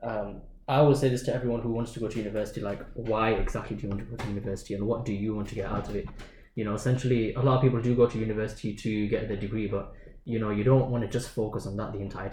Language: English